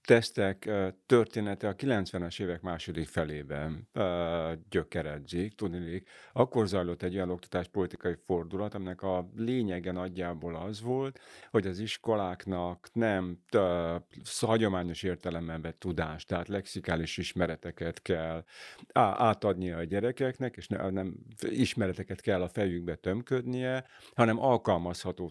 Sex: male